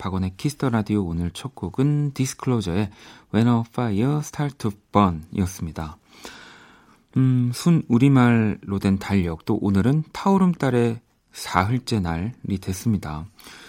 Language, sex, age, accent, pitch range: Korean, male, 30-49, native, 95-120 Hz